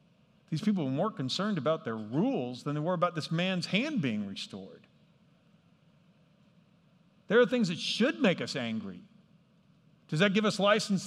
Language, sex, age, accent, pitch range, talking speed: English, male, 50-69, American, 145-195 Hz, 165 wpm